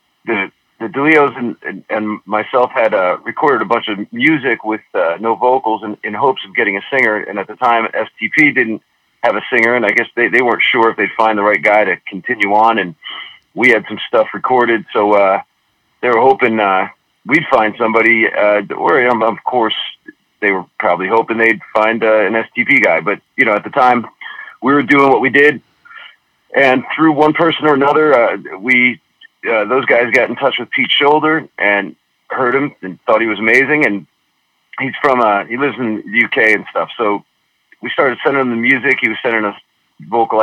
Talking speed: 210 wpm